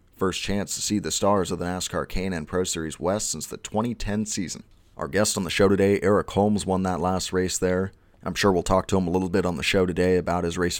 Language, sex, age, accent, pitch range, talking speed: English, male, 30-49, American, 90-105 Hz, 260 wpm